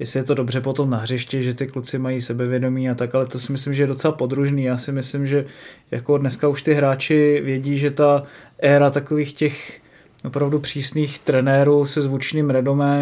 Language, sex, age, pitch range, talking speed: Czech, male, 20-39, 135-145 Hz, 200 wpm